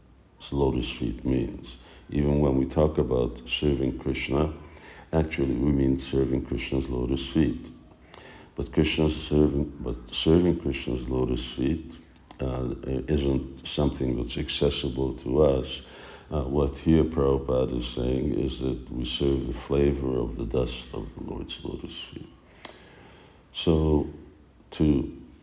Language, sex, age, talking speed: English, male, 60-79, 125 wpm